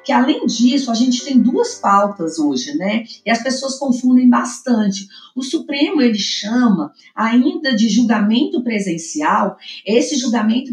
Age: 40-59